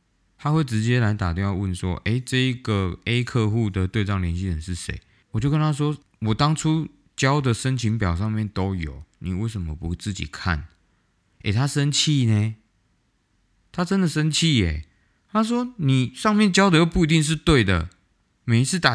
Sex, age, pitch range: male, 20-39, 95-135 Hz